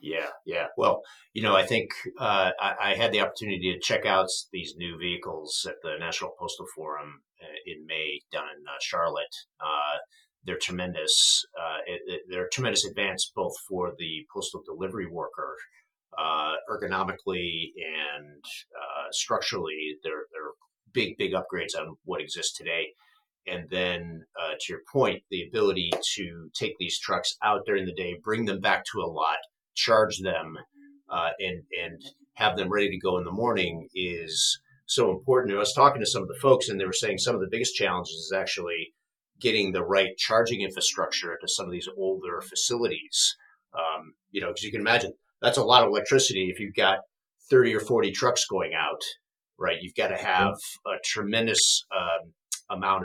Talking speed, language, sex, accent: 180 wpm, English, male, American